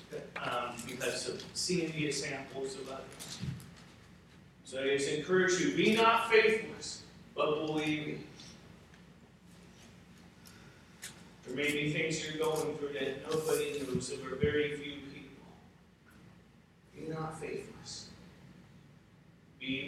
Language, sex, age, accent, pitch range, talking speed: English, male, 40-59, American, 135-160 Hz, 120 wpm